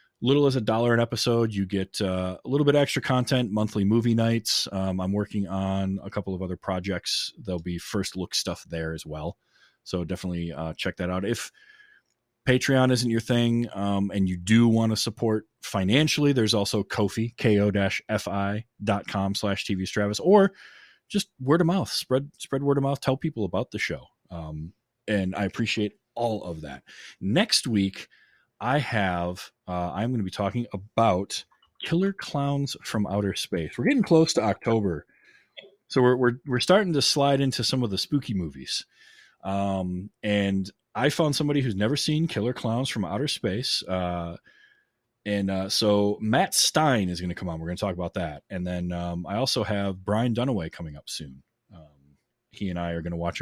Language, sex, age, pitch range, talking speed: English, male, 20-39, 95-125 Hz, 185 wpm